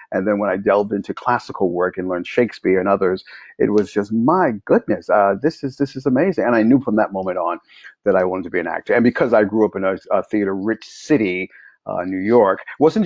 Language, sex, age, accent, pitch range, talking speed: English, male, 50-69, American, 95-115 Hz, 240 wpm